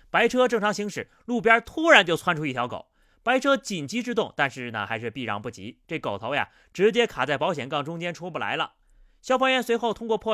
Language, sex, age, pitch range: Chinese, male, 30-49, 155-230 Hz